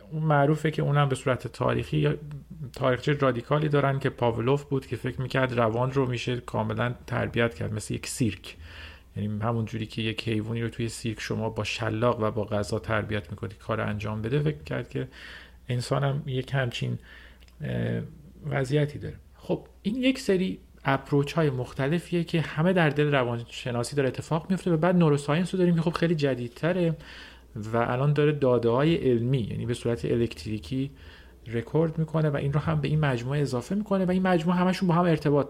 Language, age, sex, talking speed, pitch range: Persian, 40-59, male, 180 wpm, 115-150 Hz